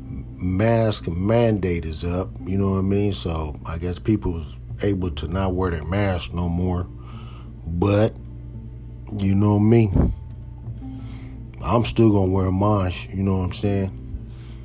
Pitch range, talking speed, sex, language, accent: 85-105 Hz, 155 wpm, male, English, American